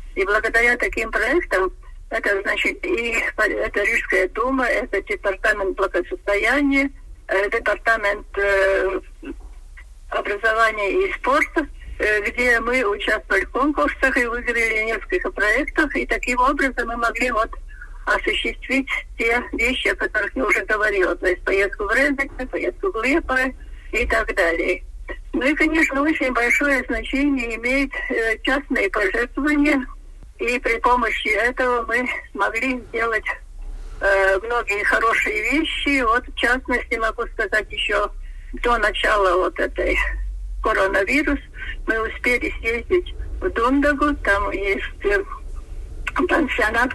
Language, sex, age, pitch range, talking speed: Russian, female, 50-69, 215-285 Hz, 120 wpm